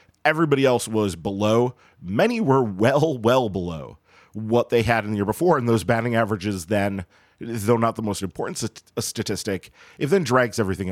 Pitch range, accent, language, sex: 105-130 Hz, American, English, male